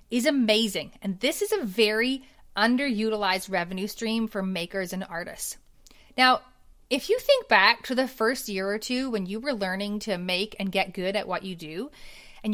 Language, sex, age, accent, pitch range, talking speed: English, female, 30-49, American, 190-235 Hz, 185 wpm